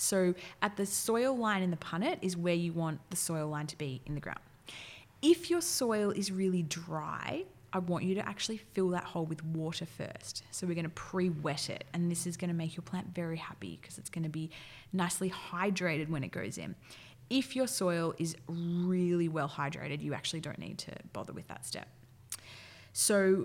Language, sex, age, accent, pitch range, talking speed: English, female, 20-39, Australian, 145-185 Hz, 205 wpm